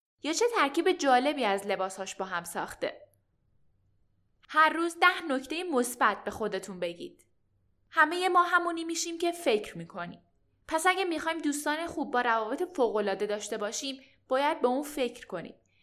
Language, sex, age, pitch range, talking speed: Persian, female, 10-29, 210-320 Hz, 150 wpm